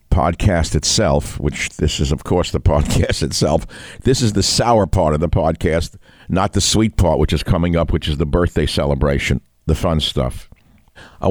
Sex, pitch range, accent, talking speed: male, 75-95 Hz, American, 185 wpm